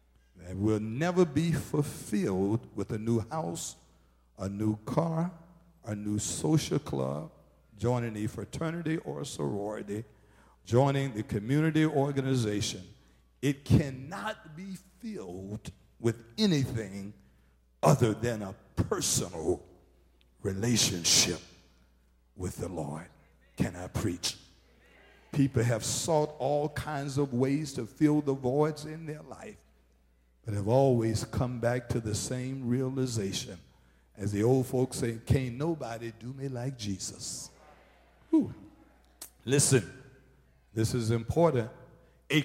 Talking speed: 115 wpm